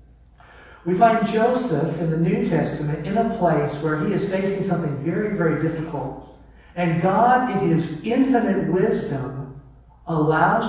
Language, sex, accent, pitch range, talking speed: English, male, American, 145-195 Hz, 140 wpm